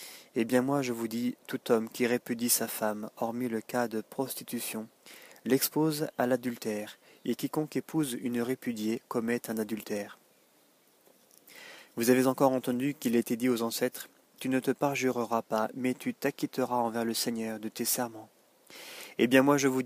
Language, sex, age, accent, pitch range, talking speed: French, male, 30-49, French, 115-135 Hz, 170 wpm